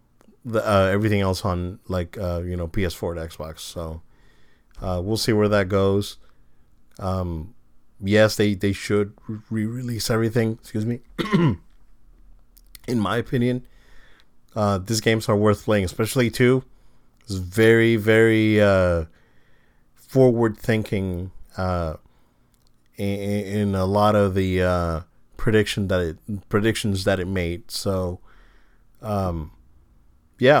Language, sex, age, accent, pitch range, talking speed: English, male, 40-59, American, 90-125 Hz, 120 wpm